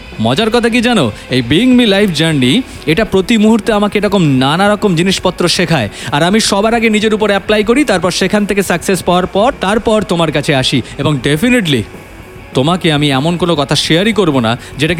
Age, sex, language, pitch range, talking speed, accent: 40-59, male, Bengali, 130-205 Hz, 190 wpm, native